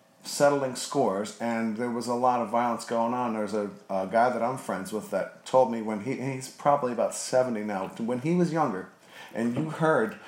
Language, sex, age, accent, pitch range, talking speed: English, male, 40-59, American, 115-135 Hz, 210 wpm